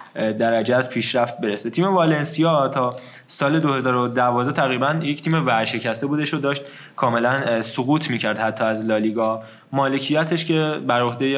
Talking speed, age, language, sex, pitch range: 150 wpm, 20-39, Persian, male, 120-145 Hz